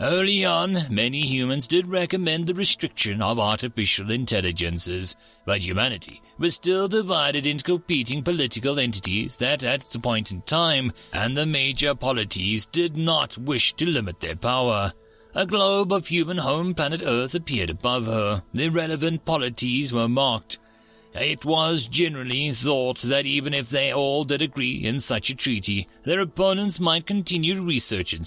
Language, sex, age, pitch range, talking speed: English, male, 40-59, 110-165 Hz, 155 wpm